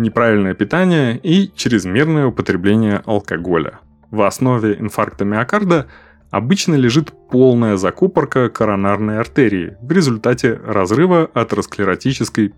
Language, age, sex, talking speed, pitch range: Russian, 20-39, male, 95 wpm, 100-135 Hz